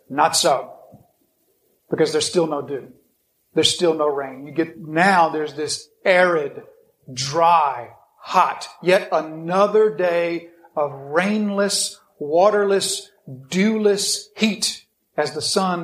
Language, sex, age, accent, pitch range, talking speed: English, male, 40-59, American, 160-200 Hz, 115 wpm